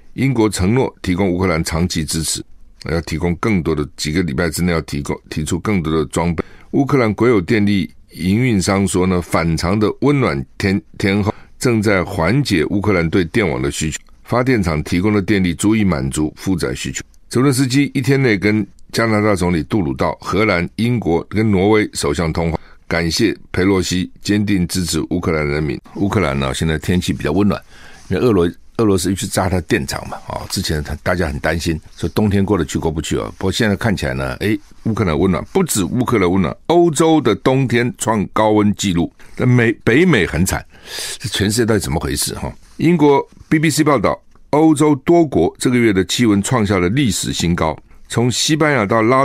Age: 60-79